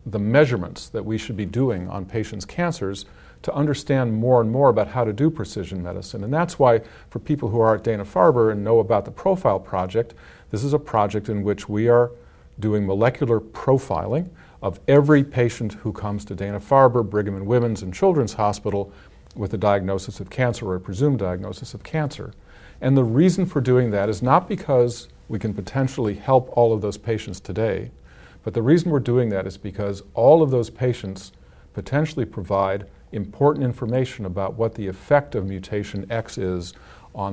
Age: 50-69